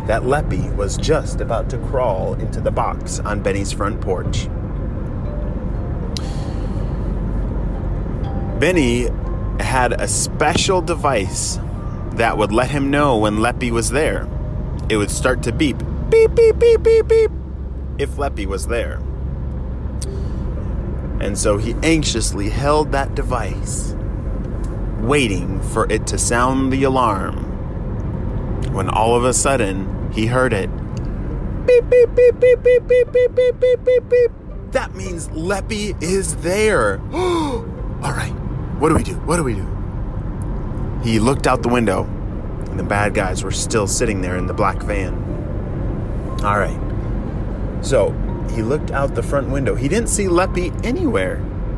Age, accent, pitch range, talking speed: 30-49, American, 100-145 Hz, 140 wpm